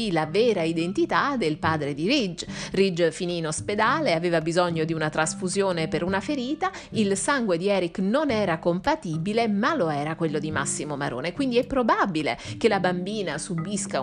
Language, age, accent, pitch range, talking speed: Italian, 30-49, native, 170-220 Hz, 170 wpm